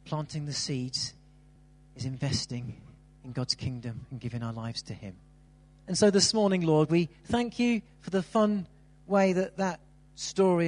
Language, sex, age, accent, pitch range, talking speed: English, male, 40-59, British, 145-180 Hz, 165 wpm